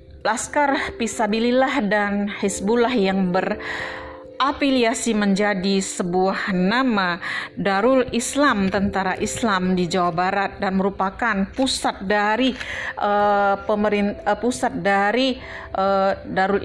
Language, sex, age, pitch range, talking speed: Indonesian, female, 40-59, 175-225 Hz, 95 wpm